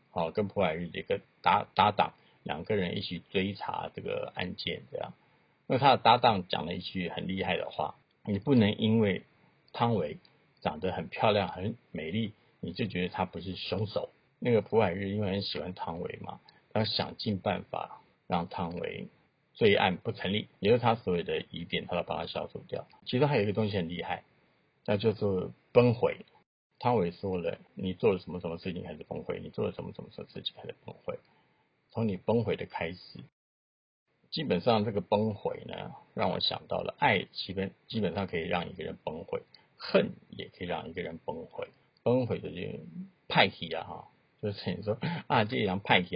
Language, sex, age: Chinese, male, 50-69